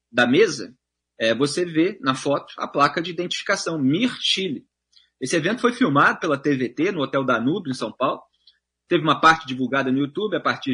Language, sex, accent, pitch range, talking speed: Portuguese, male, Brazilian, 125-185 Hz, 180 wpm